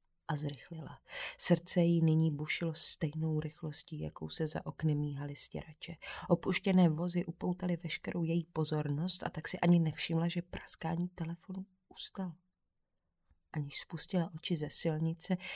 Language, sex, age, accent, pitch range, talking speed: Czech, female, 30-49, native, 155-175 Hz, 130 wpm